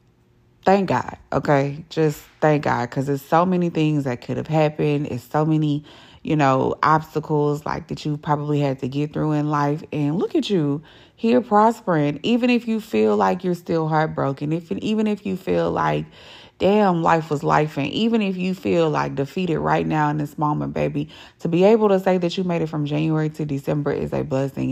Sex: female